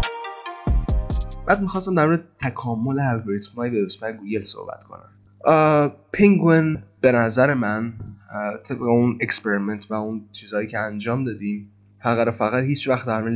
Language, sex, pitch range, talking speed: Persian, male, 100-120 Hz, 125 wpm